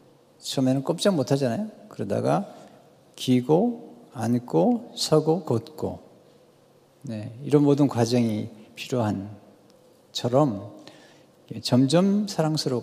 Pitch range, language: 120-165 Hz, Korean